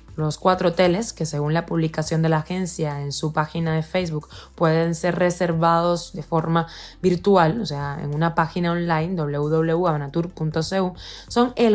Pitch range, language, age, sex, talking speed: 165-210 Hz, Spanish, 20-39, female, 155 wpm